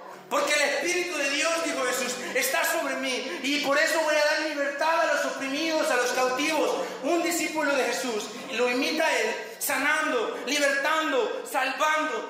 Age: 40-59